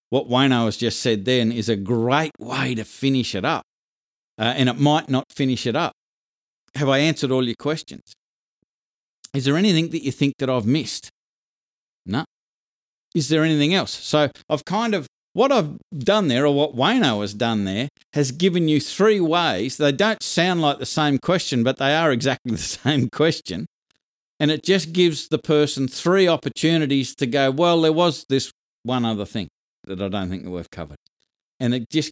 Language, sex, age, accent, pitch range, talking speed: English, male, 50-69, Australian, 115-150 Hz, 190 wpm